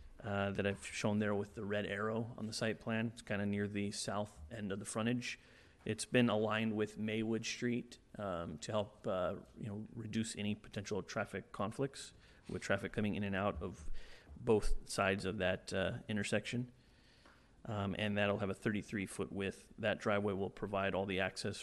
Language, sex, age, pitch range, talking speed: English, male, 30-49, 100-110 Hz, 190 wpm